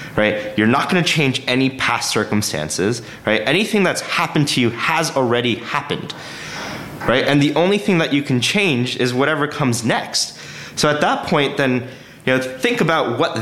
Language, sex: English, male